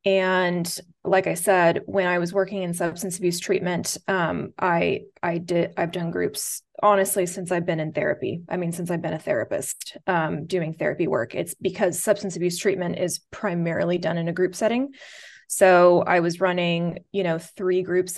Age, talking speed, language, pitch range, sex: 20-39, 185 wpm, English, 175-195 Hz, female